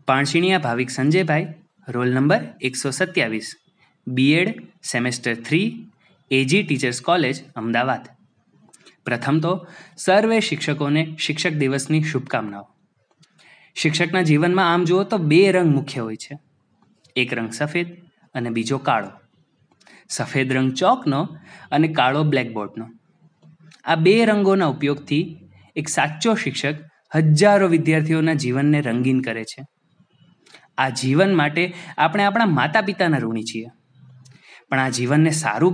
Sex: male